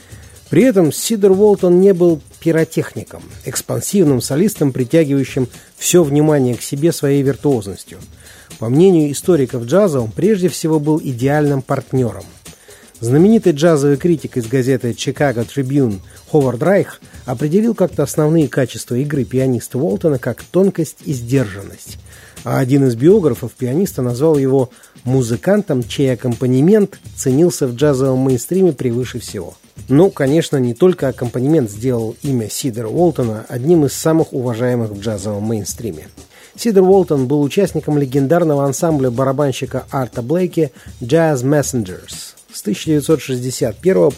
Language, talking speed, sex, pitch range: Russian, 125 wpm, male, 125-160 Hz